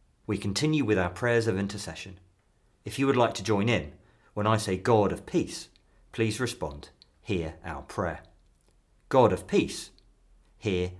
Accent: British